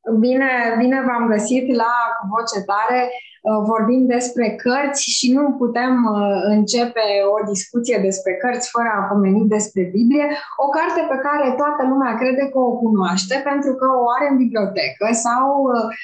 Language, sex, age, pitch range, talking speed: Romanian, female, 20-39, 215-270 Hz, 145 wpm